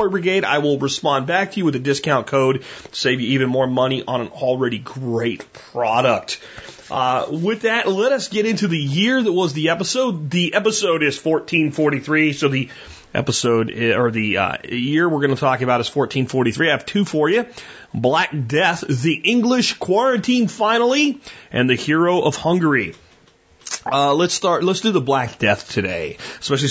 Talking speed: 180 wpm